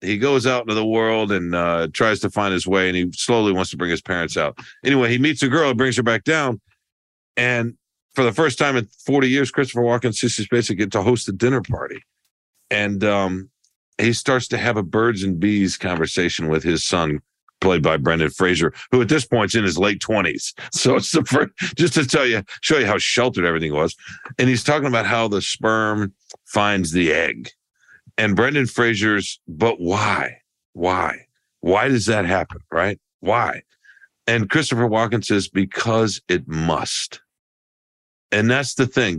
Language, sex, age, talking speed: English, male, 50-69, 190 wpm